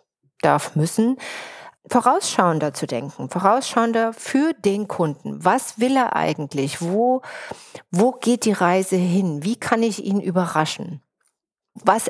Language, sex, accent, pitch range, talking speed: German, female, German, 170-235 Hz, 125 wpm